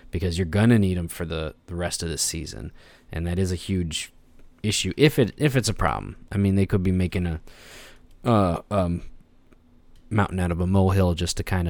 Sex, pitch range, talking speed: male, 85-105 Hz, 210 wpm